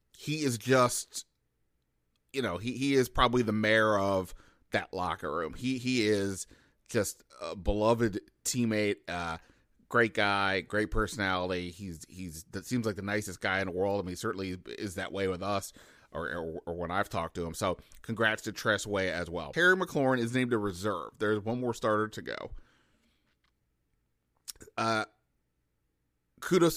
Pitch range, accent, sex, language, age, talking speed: 100-115 Hz, American, male, English, 30-49, 170 wpm